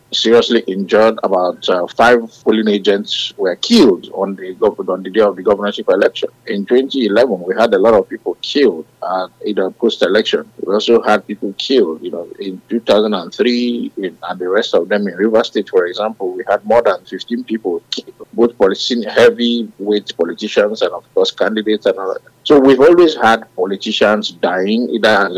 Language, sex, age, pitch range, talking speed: English, male, 50-69, 95-130 Hz, 185 wpm